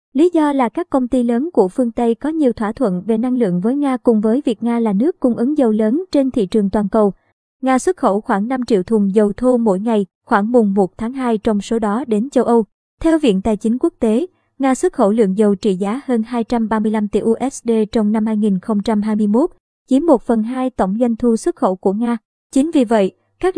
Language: Vietnamese